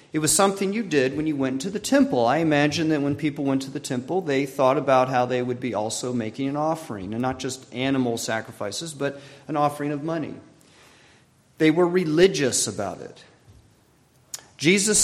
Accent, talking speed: American, 190 wpm